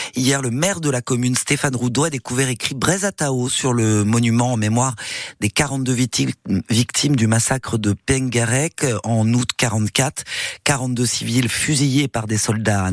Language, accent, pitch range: French, French, 115-145 Hz